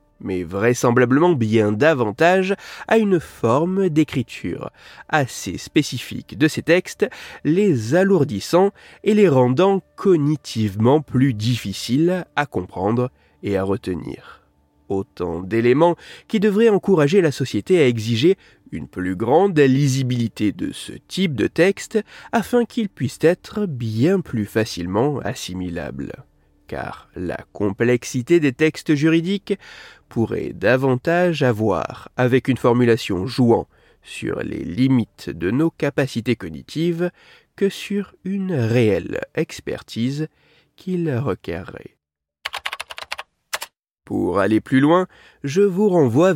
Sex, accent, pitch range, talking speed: male, French, 115-175 Hz, 110 wpm